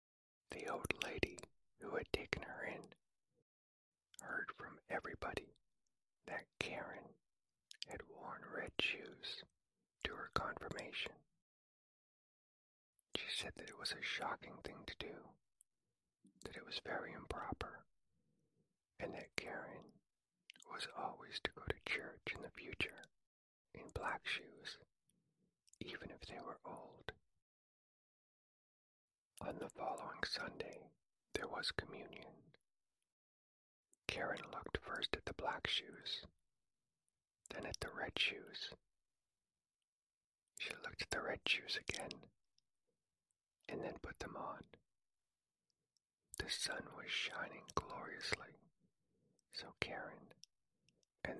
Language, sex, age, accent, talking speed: English, male, 40-59, American, 110 wpm